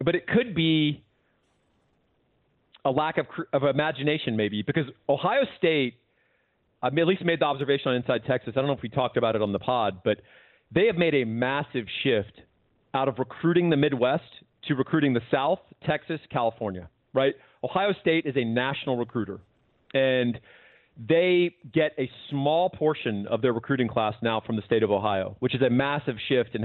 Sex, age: male, 40-59